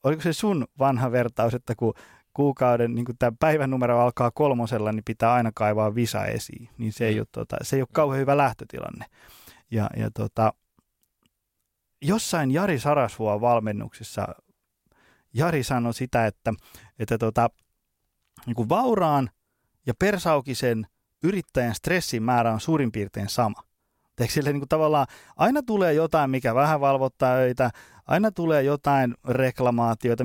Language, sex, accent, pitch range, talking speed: Finnish, male, native, 115-155 Hz, 135 wpm